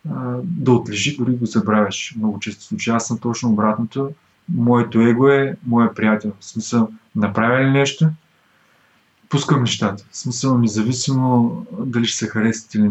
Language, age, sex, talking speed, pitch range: Bulgarian, 20-39, male, 155 wpm, 110-130 Hz